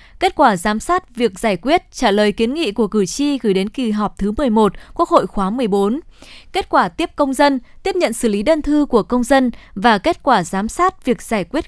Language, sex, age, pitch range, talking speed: Vietnamese, female, 20-39, 225-285 Hz, 235 wpm